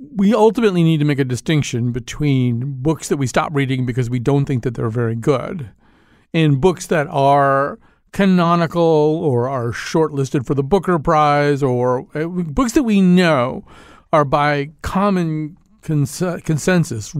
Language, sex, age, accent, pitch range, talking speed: English, male, 50-69, American, 130-180 Hz, 145 wpm